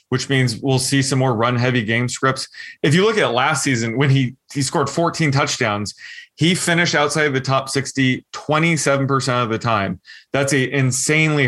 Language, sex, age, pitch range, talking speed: English, male, 20-39, 125-150 Hz, 190 wpm